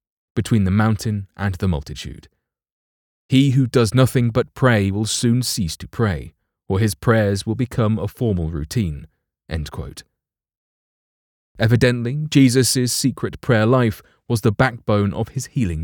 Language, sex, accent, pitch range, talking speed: English, male, British, 95-125 Hz, 145 wpm